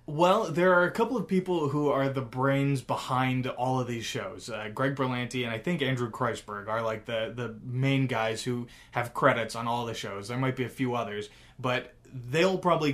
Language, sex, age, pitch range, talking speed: English, male, 20-39, 120-140 Hz, 215 wpm